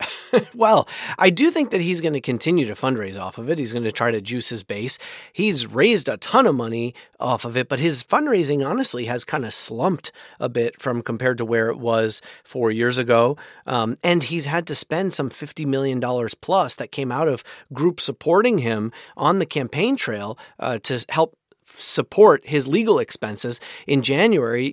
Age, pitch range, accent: 30-49, 120-165 Hz, American